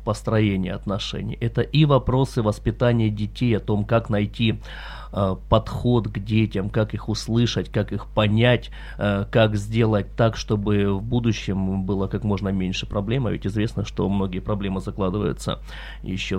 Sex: male